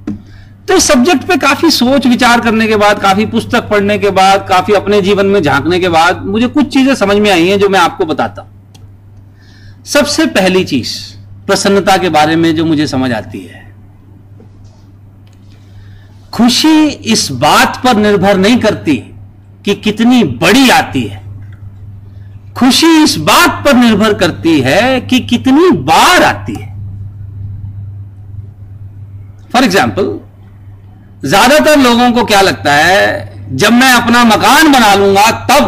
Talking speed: 140 wpm